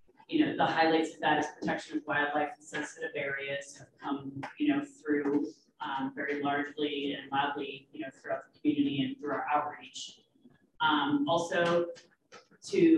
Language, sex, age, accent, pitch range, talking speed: English, female, 30-49, American, 145-210 Hz, 155 wpm